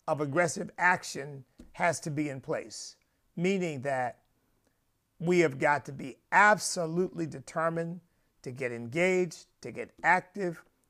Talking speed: 125 wpm